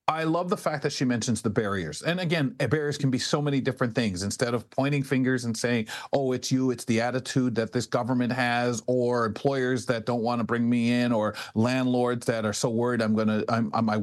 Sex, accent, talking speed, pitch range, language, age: male, American, 225 wpm, 115-140 Hz, English, 40-59